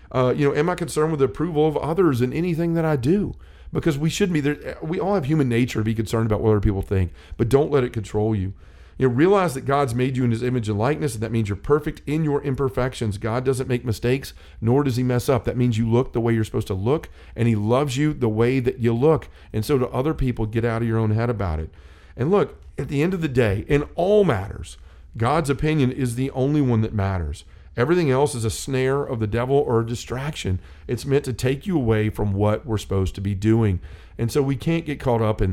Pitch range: 110-140 Hz